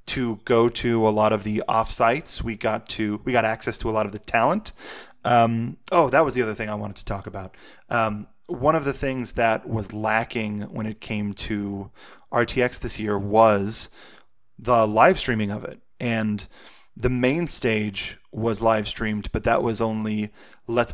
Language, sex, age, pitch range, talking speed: English, male, 30-49, 110-125 Hz, 185 wpm